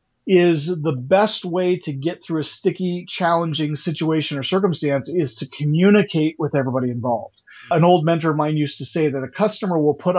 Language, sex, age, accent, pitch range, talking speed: English, male, 40-59, American, 150-180 Hz, 190 wpm